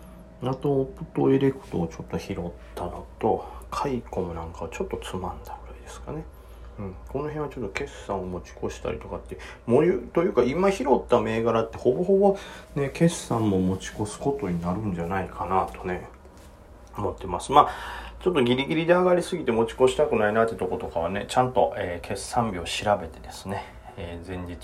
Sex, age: male, 40-59